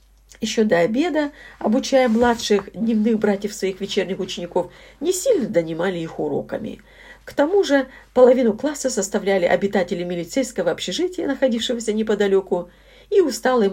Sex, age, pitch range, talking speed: female, 50-69, 180-270 Hz, 120 wpm